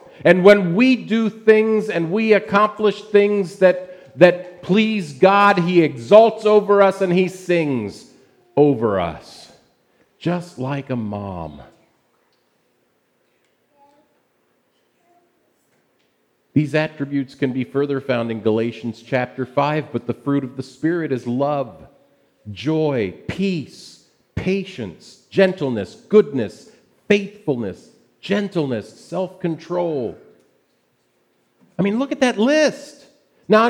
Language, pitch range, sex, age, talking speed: English, 120-200 Hz, male, 50-69, 105 wpm